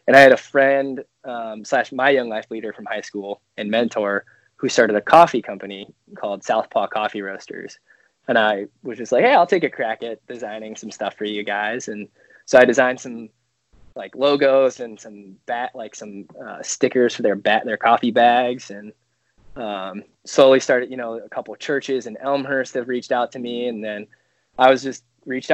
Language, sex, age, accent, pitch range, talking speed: English, male, 20-39, American, 105-130 Hz, 200 wpm